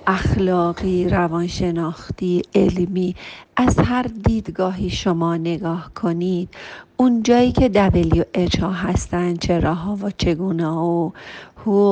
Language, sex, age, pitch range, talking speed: Persian, female, 50-69, 175-220 Hz, 110 wpm